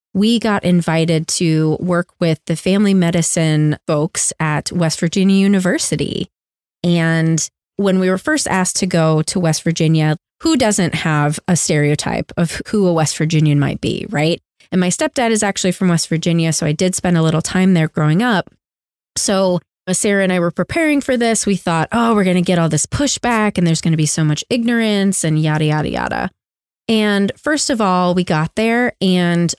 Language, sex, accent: English, female, American